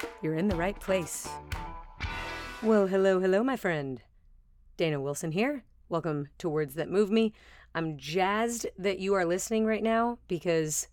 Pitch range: 155-195 Hz